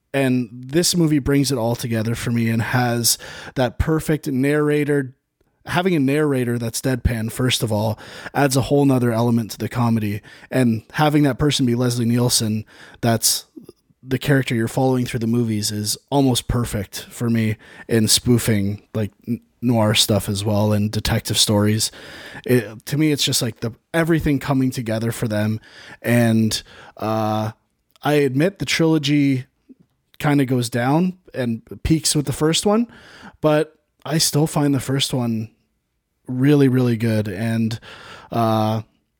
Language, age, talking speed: English, 20-39, 155 wpm